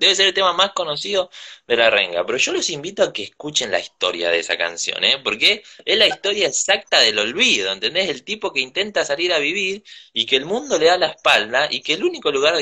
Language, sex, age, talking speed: Spanish, male, 20-39, 240 wpm